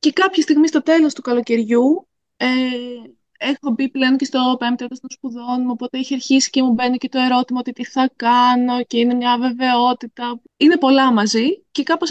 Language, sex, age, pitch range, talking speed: Greek, female, 20-39, 235-295 Hz, 190 wpm